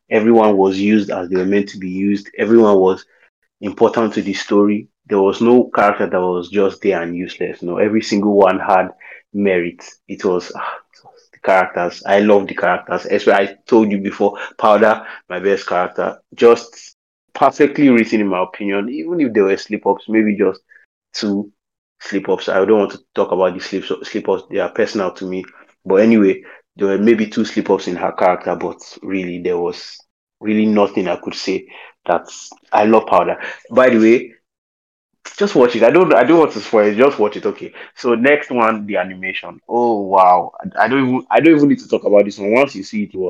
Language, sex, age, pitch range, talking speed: English, male, 30-49, 95-115 Hz, 200 wpm